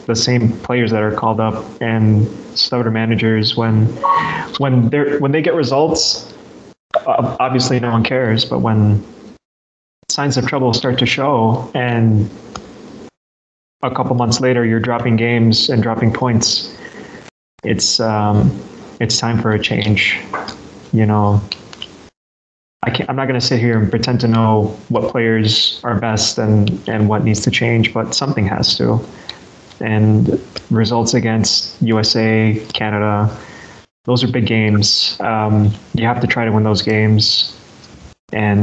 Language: English